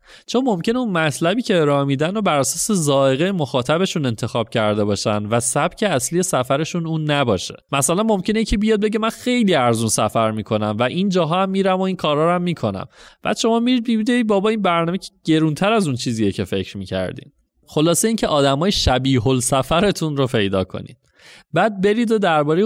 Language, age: Persian, 30-49